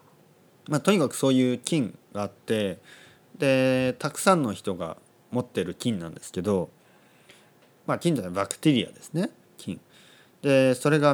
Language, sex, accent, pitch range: Japanese, male, native, 100-150 Hz